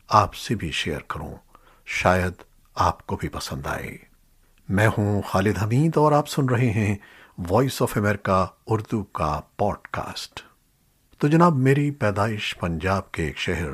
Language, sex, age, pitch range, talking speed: Urdu, male, 60-79, 90-125 Hz, 150 wpm